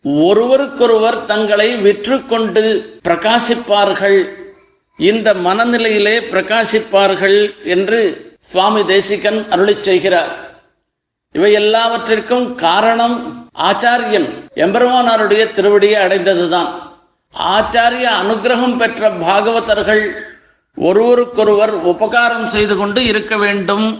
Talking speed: 75 wpm